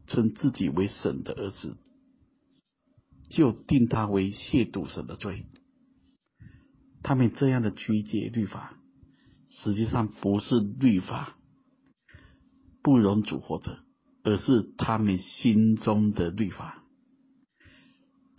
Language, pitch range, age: Chinese, 100-150 Hz, 50-69